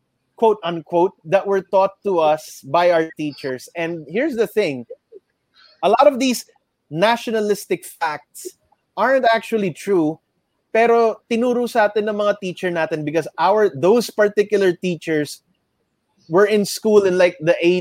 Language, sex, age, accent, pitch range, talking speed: English, male, 20-39, Filipino, 165-225 Hz, 140 wpm